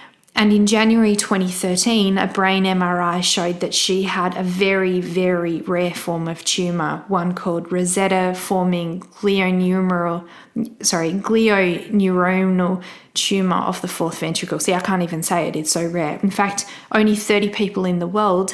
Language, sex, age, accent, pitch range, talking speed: English, female, 20-39, Australian, 175-195 Hz, 150 wpm